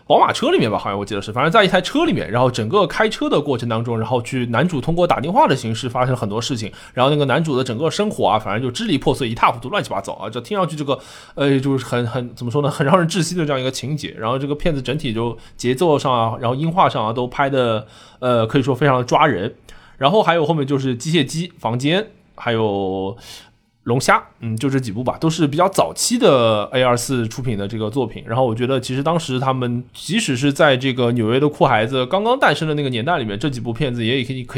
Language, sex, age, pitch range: Chinese, male, 20-39, 115-145 Hz